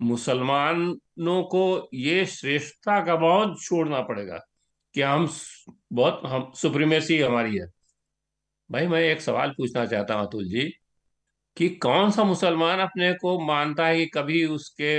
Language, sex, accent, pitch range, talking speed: Hindi, male, native, 130-165 Hz, 140 wpm